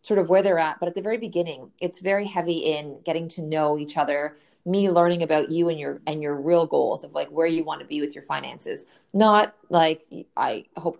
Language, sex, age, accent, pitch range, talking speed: English, female, 20-39, American, 155-185 Hz, 235 wpm